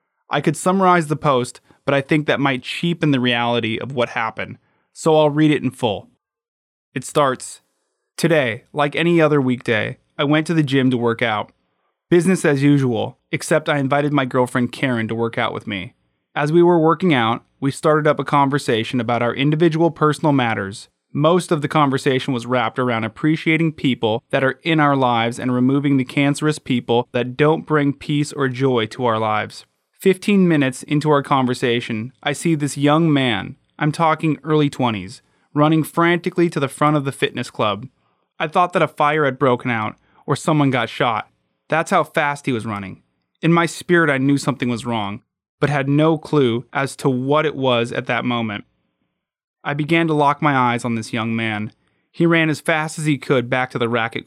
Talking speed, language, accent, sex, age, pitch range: 195 wpm, English, American, male, 20-39, 120-155 Hz